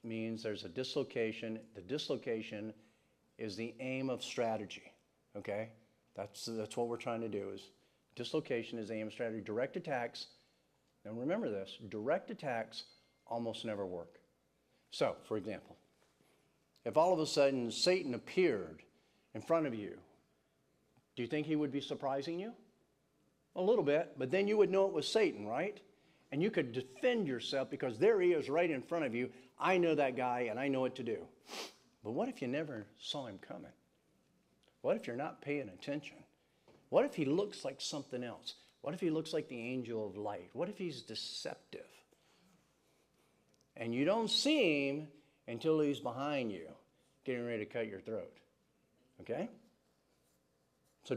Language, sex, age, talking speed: English, male, 50-69, 170 wpm